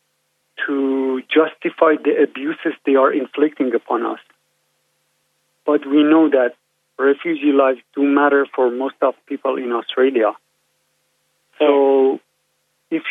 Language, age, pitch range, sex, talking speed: English, 50-69, 135-160 Hz, male, 115 wpm